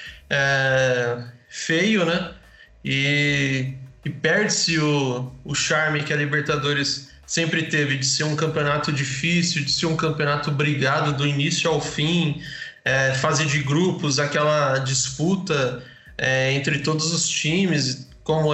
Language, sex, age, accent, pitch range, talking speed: Portuguese, male, 20-39, Brazilian, 130-165 Hz, 130 wpm